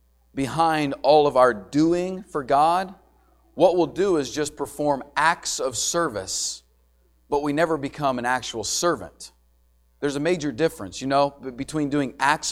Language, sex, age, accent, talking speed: English, male, 40-59, American, 155 wpm